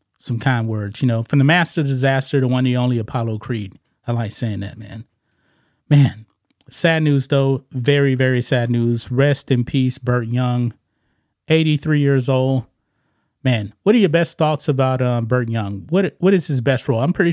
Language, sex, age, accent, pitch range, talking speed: English, male, 30-49, American, 120-145 Hz, 185 wpm